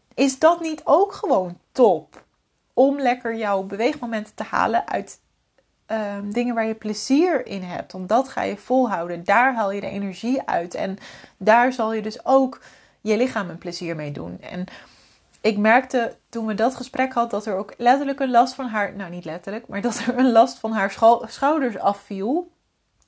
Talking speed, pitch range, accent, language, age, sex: 185 wpm, 195-245 Hz, Dutch, Dutch, 30-49, female